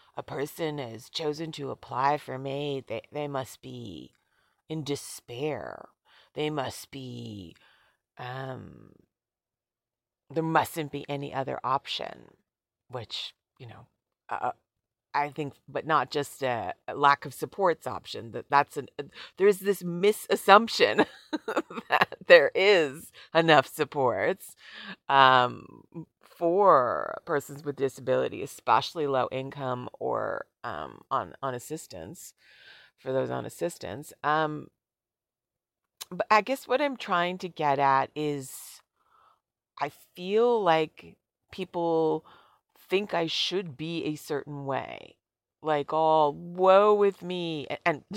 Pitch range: 135-170 Hz